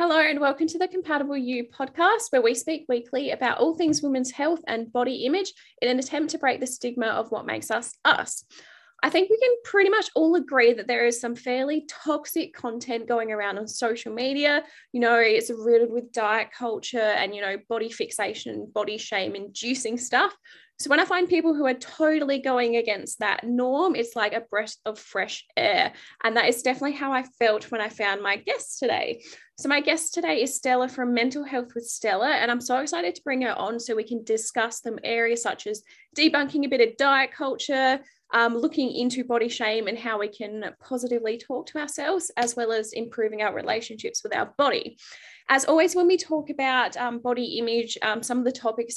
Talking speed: 205 wpm